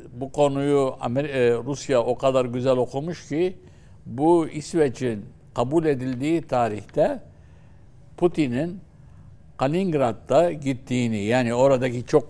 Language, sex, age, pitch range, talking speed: Turkish, male, 60-79, 110-145 Hz, 95 wpm